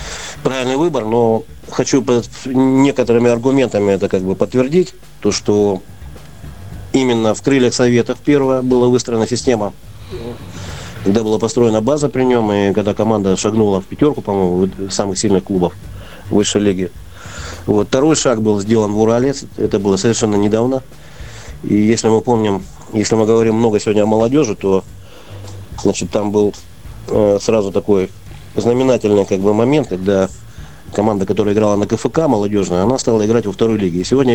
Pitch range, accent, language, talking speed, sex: 95-120 Hz, native, Russian, 150 wpm, male